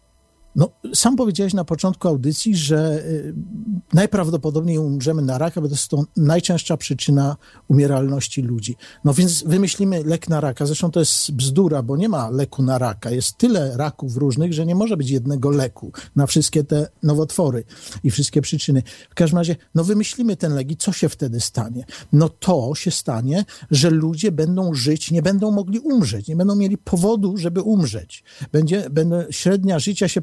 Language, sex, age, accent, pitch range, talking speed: Polish, male, 50-69, native, 140-185 Hz, 175 wpm